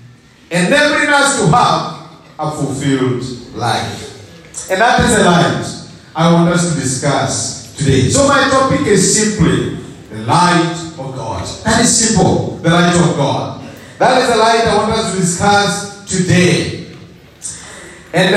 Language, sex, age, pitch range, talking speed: English, male, 40-59, 145-200 Hz, 155 wpm